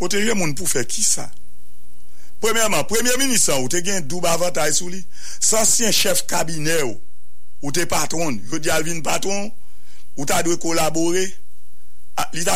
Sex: male